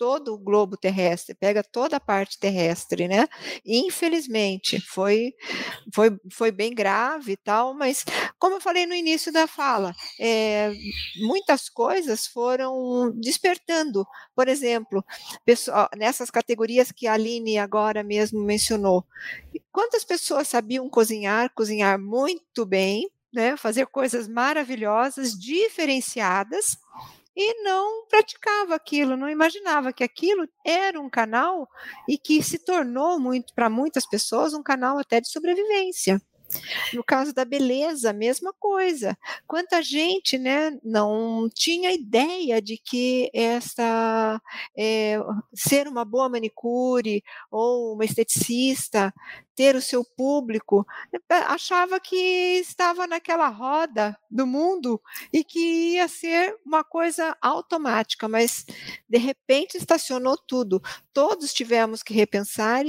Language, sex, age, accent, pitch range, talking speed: Portuguese, female, 50-69, Brazilian, 220-320 Hz, 120 wpm